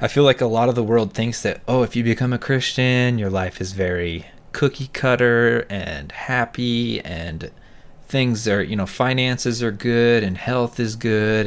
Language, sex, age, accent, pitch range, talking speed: English, male, 20-39, American, 95-120 Hz, 190 wpm